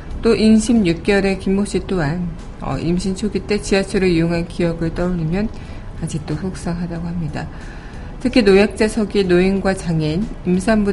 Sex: female